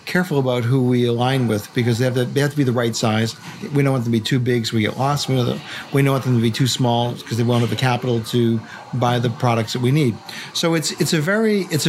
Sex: male